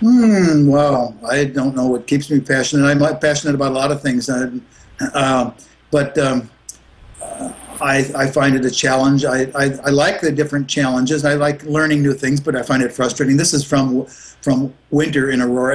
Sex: male